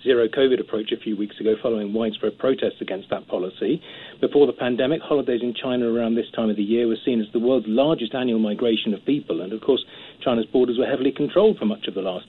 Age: 40-59